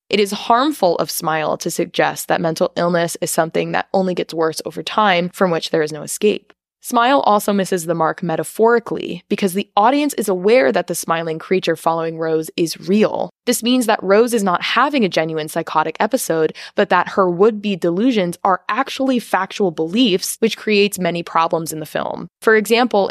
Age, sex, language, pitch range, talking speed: 20-39, female, English, 170-215 Hz, 185 wpm